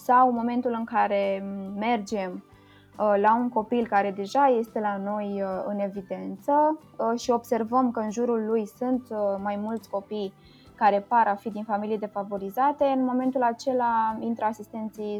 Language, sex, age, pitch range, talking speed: Romanian, female, 20-39, 200-245 Hz, 145 wpm